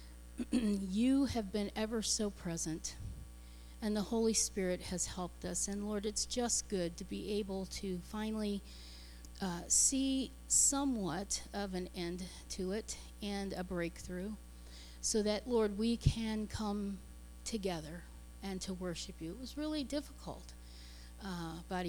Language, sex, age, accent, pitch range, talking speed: English, female, 40-59, American, 165-220 Hz, 140 wpm